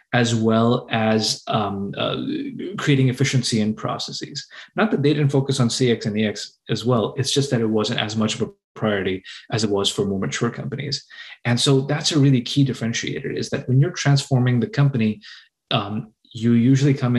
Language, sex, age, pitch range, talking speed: English, male, 20-39, 110-135 Hz, 190 wpm